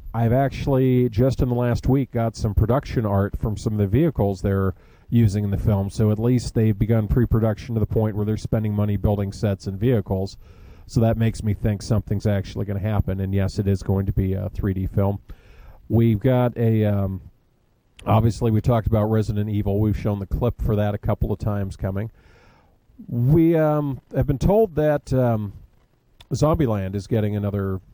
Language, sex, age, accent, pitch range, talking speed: English, male, 40-59, American, 100-120 Hz, 195 wpm